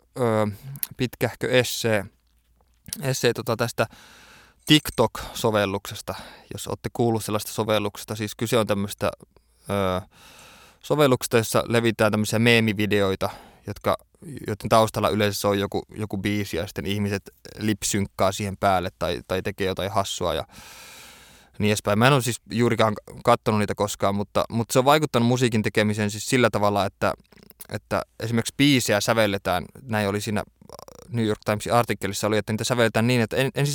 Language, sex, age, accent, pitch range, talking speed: Finnish, male, 20-39, native, 100-115 Hz, 135 wpm